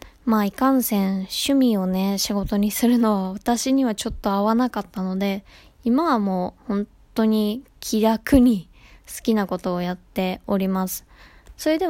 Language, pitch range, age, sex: Japanese, 195-235 Hz, 20-39, female